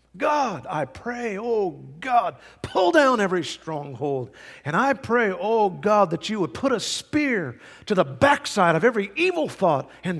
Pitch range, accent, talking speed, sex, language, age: 125-185 Hz, American, 165 wpm, male, English, 50-69